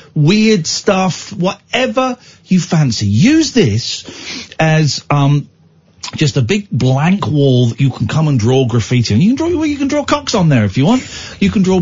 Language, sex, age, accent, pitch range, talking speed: English, male, 50-69, British, 135-210 Hz, 195 wpm